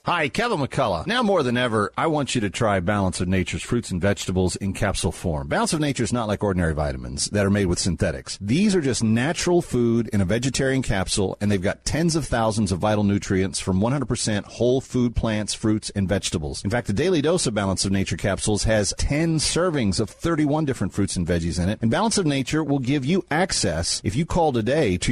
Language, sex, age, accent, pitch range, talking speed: English, male, 40-59, American, 100-135 Hz, 225 wpm